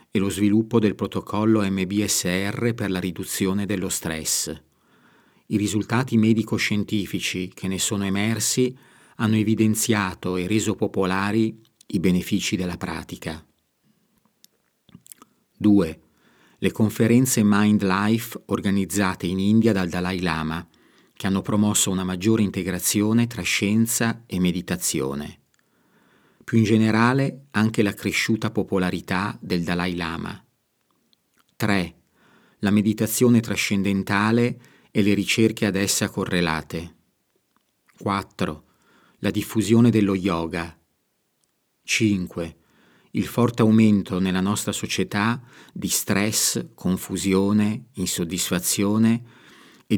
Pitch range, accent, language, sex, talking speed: 95-110 Hz, native, Italian, male, 100 wpm